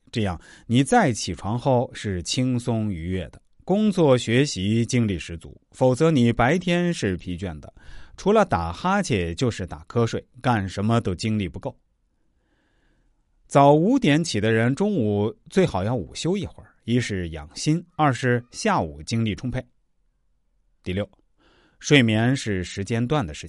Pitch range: 95-145 Hz